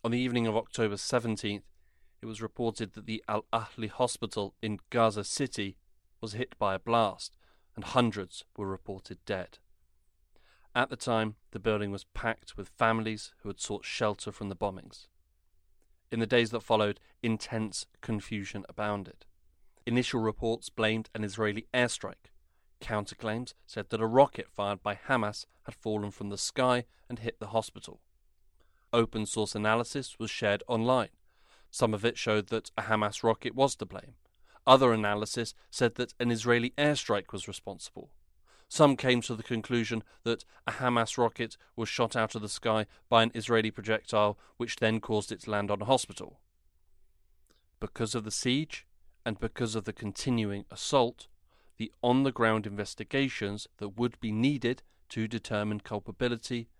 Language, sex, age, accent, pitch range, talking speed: English, male, 30-49, British, 105-120 Hz, 155 wpm